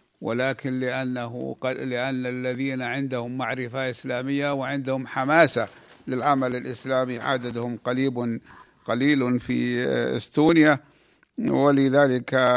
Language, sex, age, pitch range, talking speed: Arabic, male, 60-79, 125-145 Hz, 85 wpm